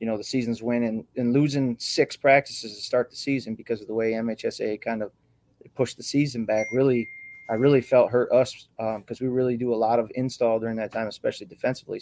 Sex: male